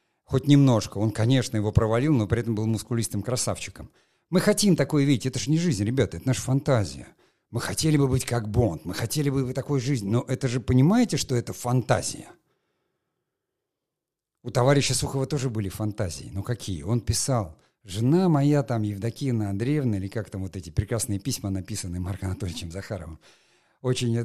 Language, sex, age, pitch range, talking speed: Russian, male, 50-69, 105-140 Hz, 175 wpm